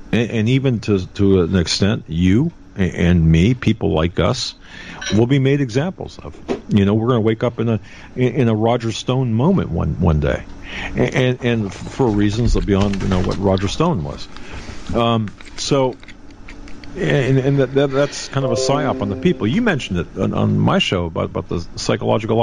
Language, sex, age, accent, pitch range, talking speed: English, male, 50-69, American, 95-125 Hz, 190 wpm